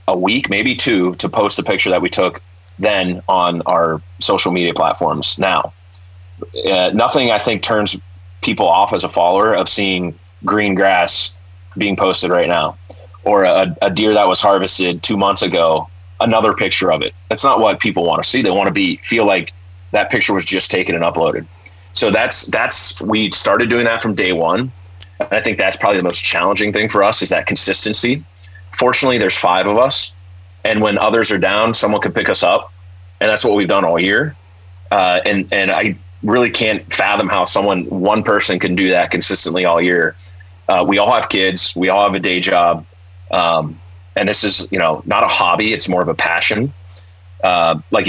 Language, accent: English, American